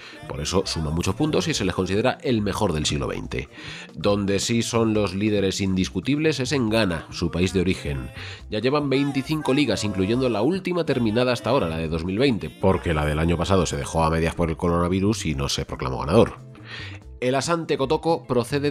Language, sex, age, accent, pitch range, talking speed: Spanish, male, 30-49, Spanish, 90-130 Hz, 195 wpm